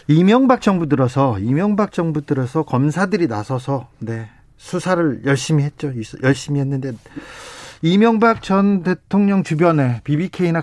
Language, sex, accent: Korean, male, native